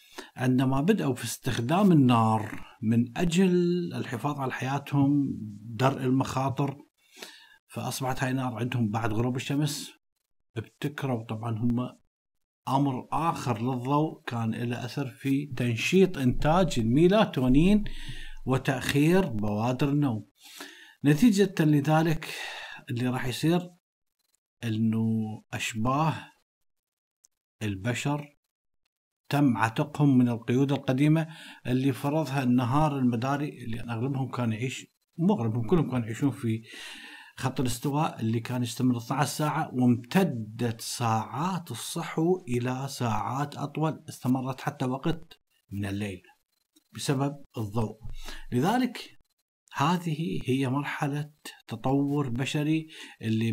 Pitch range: 120-150 Hz